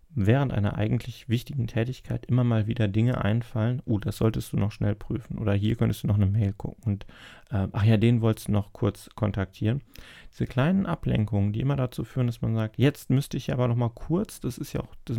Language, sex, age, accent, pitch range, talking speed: German, male, 30-49, German, 105-125 Hz, 225 wpm